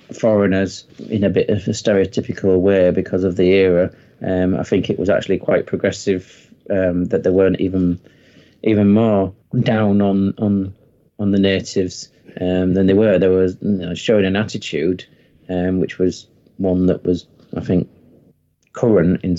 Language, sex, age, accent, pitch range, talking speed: English, male, 30-49, British, 90-105 Hz, 165 wpm